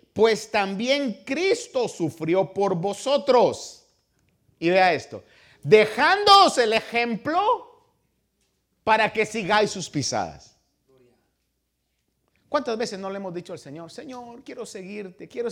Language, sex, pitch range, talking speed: Spanish, male, 175-260 Hz, 110 wpm